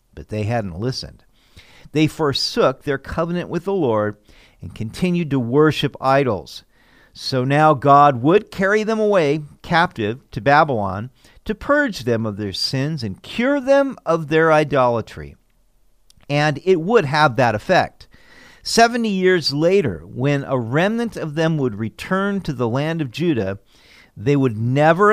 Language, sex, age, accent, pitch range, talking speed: English, male, 50-69, American, 115-175 Hz, 150 wpm